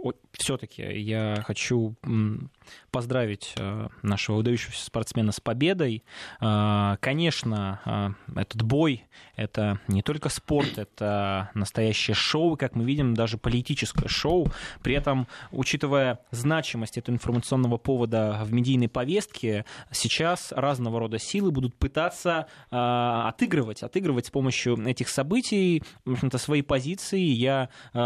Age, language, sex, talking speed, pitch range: 20-39, Russian, male, 115 wpm, 115-145 Hz